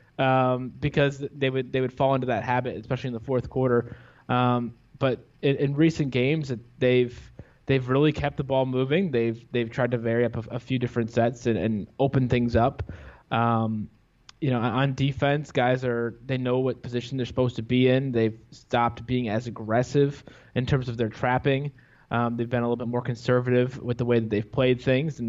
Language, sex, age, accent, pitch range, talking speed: English, male, 20-39, American, 120-140 Hz, 205 wpm